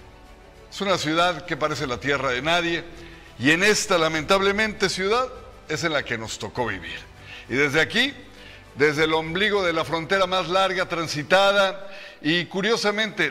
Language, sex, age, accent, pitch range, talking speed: Spanish, male, 60-79, Mexican, 145-195 Hz, 160 wpm